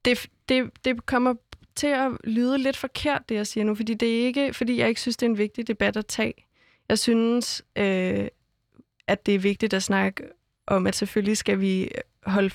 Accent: native